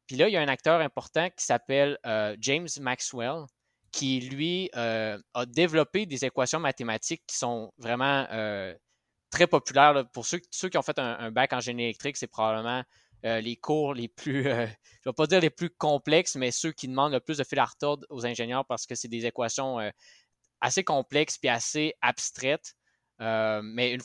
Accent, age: Canadian, 20-39